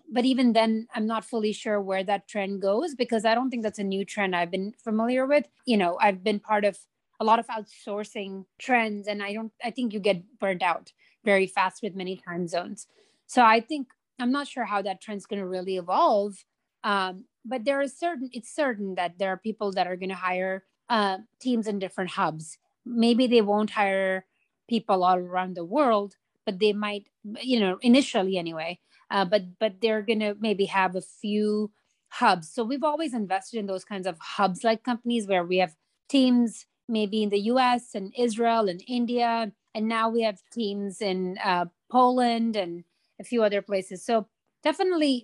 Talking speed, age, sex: 195 wpm, 30-49, female